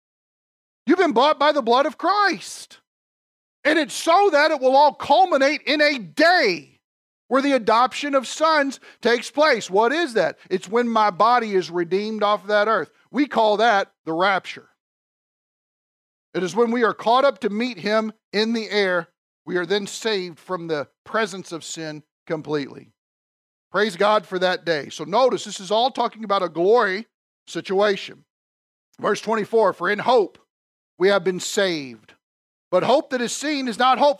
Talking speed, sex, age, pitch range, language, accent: 170 wpm, male, 50-69, 205-295 Hz, English, American